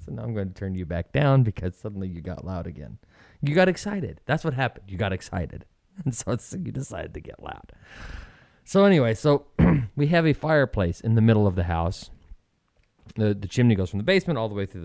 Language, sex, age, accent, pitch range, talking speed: English, male, 30-49, American, 95-125 Hz, 220 wpm